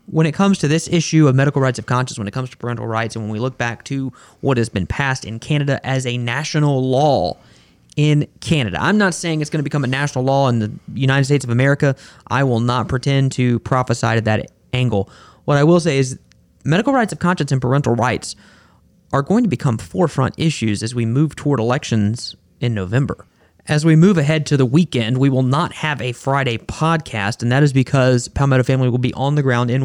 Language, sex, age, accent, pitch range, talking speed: English, male, 30-49, American, 115-145 Hz, 225 wpm